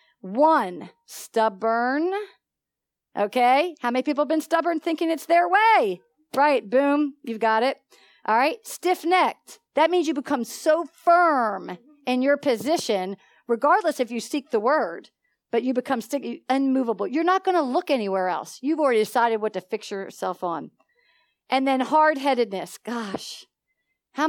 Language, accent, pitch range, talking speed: English, American, 215-300 Hz, 150 wpm